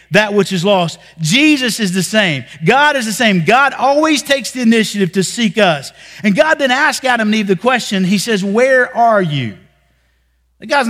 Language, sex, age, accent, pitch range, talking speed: English, male, 50-69, American, 185-265 Hz, 195 wpm